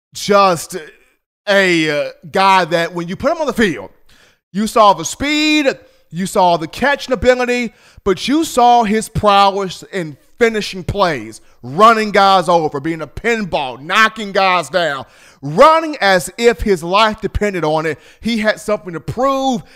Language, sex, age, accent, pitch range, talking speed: English, male, 30-49, American, 155-230 Hz, 150 wpm